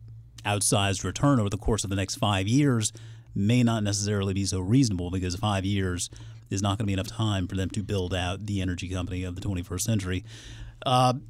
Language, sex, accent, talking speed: English, male, American, 205 wpm